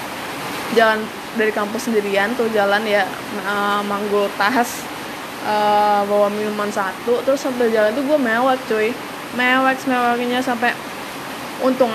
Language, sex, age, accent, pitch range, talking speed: Indonesian, female, 20-39, native, 210-250 Hz, 125 wpm